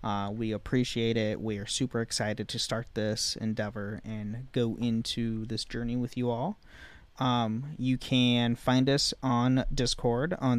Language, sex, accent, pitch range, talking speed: English, male, American, 110-130 Hz, 160 wpm